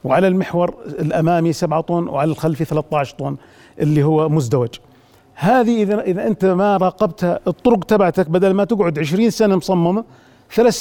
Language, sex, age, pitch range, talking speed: Arabic, male, 40-59, 160-205 Hz, 150 wpm